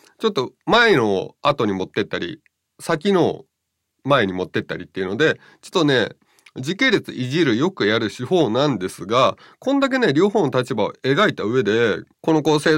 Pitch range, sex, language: 105-170 Hz, male, Japanese